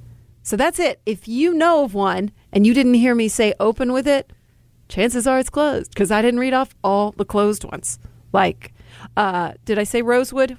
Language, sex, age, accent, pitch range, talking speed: English, female, 40-59, American, 180-245 Hz, 205 wpm